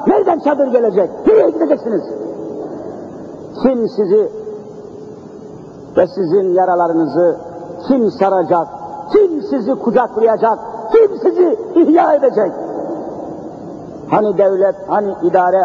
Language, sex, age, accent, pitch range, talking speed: Turkish, male, 60-79, native, 205-320 Hz, 90 wpm